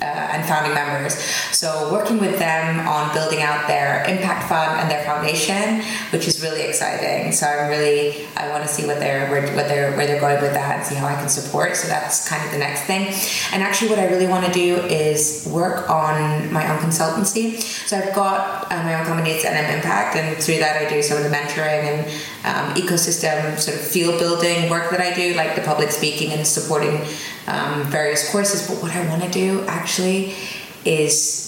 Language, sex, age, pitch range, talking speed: English, female, 20-39, 150-180 Hz, 215 wpm